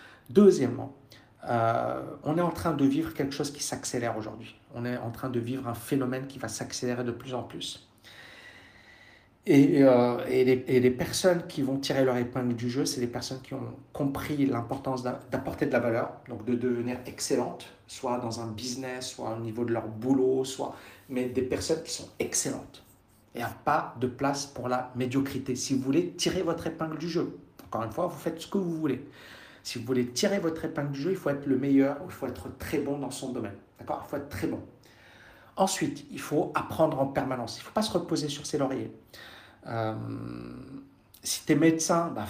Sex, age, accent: male, 60-79, French